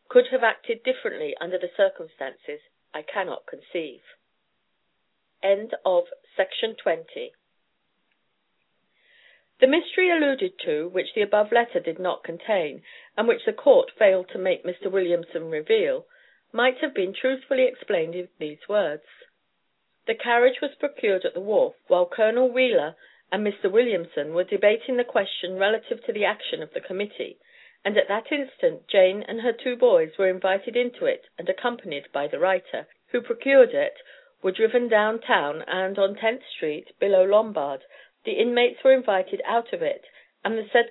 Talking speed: 155 wpm